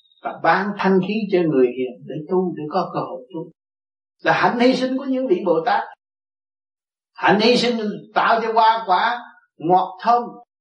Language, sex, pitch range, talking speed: Vietnamese, male, 145-210 Hz, 180 wpm